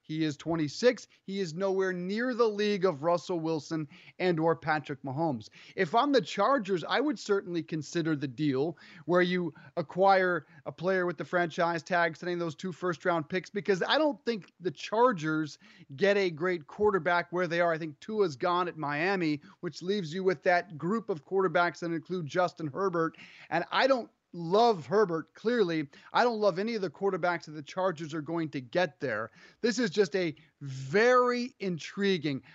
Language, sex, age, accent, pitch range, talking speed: English, male, 30-49, American, 160-200 Hz, 185 wpm